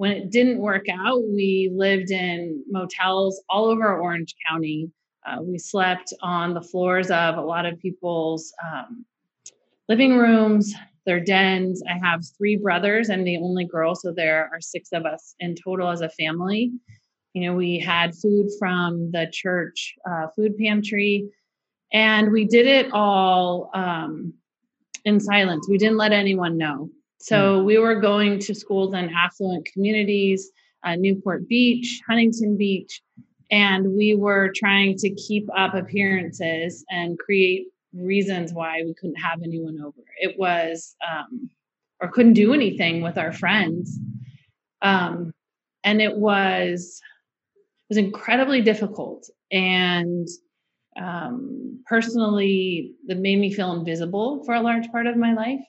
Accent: American